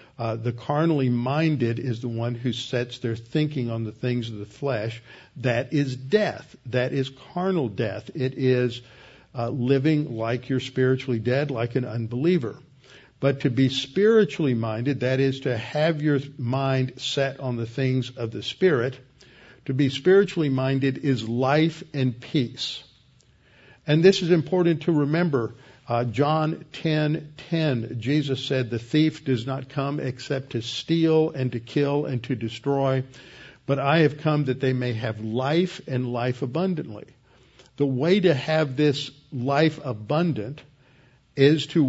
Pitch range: 120-150 Hz